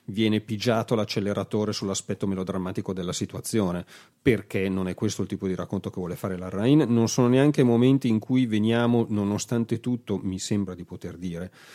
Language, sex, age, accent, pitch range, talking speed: Italian, male, 40-59, native, 95-125 Hz, 175 wpm